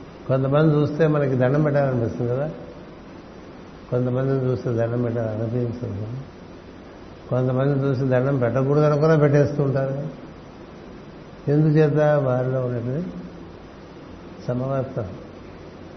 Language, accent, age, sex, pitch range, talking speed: Telugu, native, 60-79, male, 120-145 Hz, 80 wpm